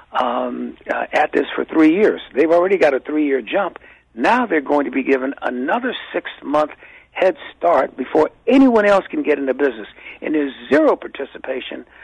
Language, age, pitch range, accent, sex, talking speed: English, 60-79, 140-180 Hz, American, male, 180 wpm